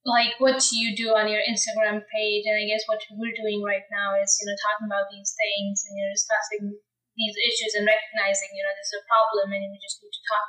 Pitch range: 205-250 Hz